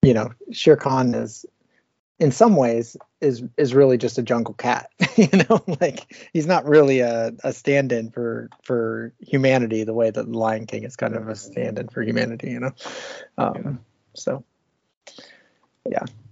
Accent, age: American, 30-49